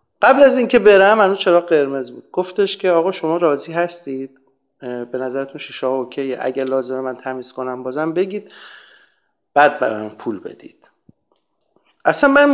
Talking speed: 150 wpm